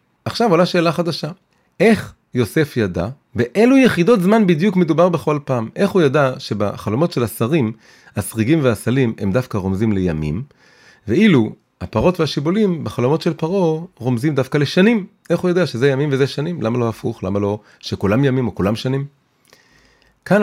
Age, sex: 30-49, male